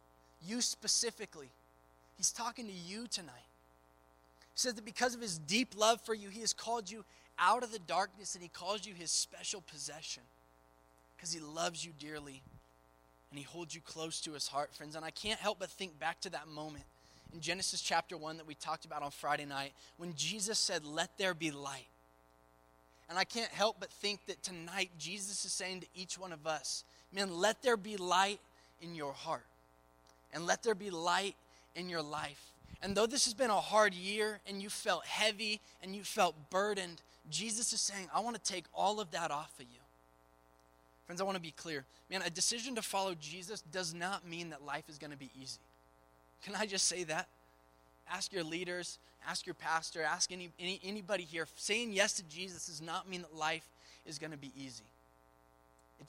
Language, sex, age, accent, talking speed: English, male, 20-39, American, 200 wpm